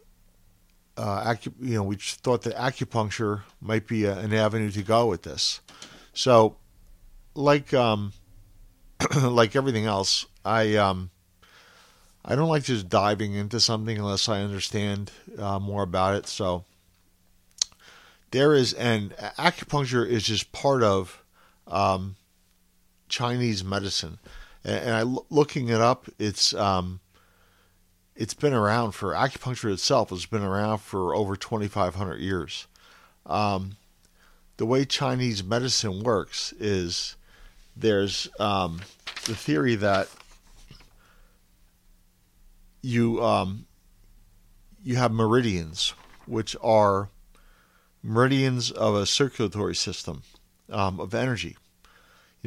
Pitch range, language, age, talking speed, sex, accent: 95-115 Hz, English, 50-69, 110 wpm, male, American